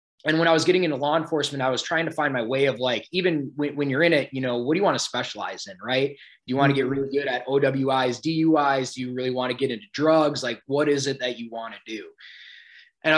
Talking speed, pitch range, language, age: 280 wpm, 120-145 Hz, English, 20-39